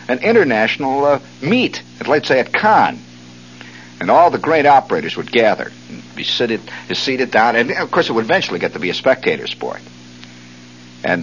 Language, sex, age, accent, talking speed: English, male, 60-79, American, 185 wpm